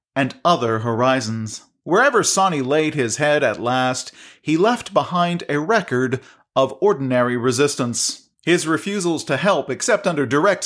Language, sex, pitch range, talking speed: English, male, 130-185 Hz, 140 wpm